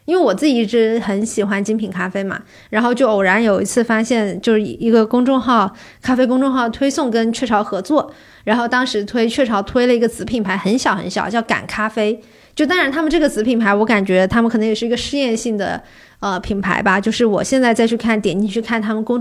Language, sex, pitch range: Chinese, female, 210-255 Hz